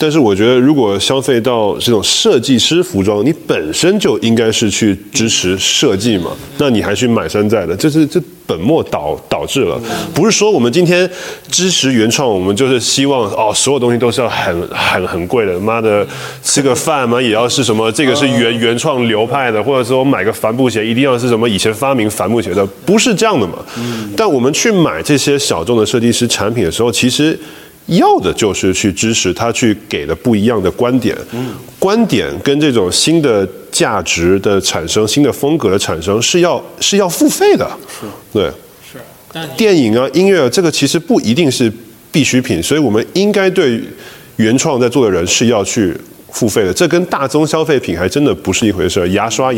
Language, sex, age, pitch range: Chinese, male, 20-39, 110-155 Hz